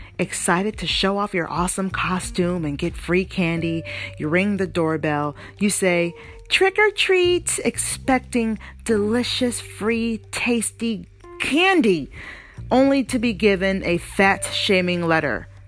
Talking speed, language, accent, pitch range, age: 125 wpm, English, American, 155-250 Hz, 40-59